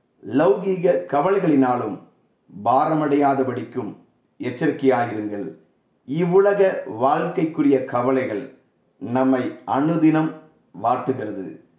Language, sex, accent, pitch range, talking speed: Tamil, male, native, 130-160 Hz, 50 wpm